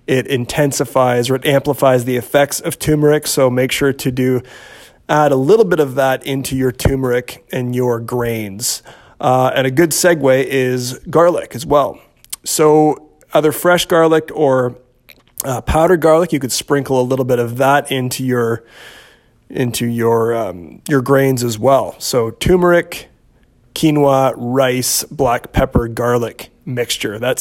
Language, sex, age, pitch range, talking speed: English, male, 30-49, 125-150 Hz, 150 wpm